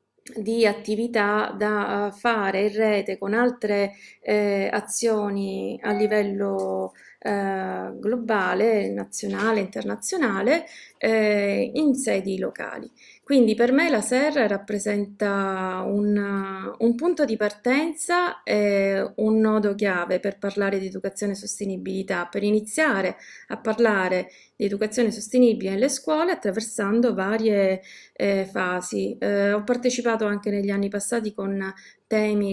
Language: Italian